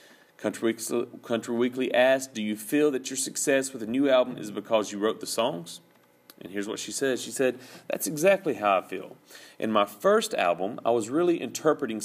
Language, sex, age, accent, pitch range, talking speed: English, male, 40-59, American, 105-130 Hz, 195 wpm